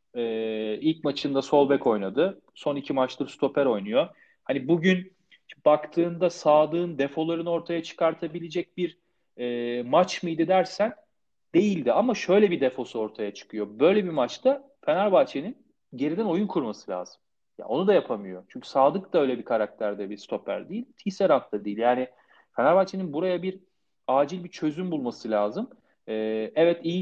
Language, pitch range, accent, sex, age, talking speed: Turkish, 130-175 Hz, native, male, 40-59, 140 wpm